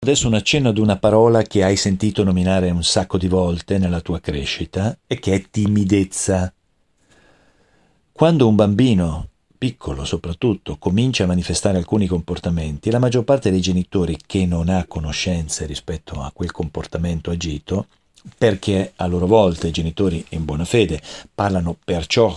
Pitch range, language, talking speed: 85-105 Hz, Italian, 155 wpm